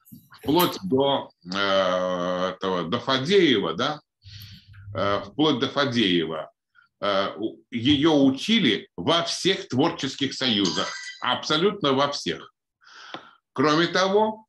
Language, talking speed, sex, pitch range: Russian, 105 wpm, male, 105-170 Hz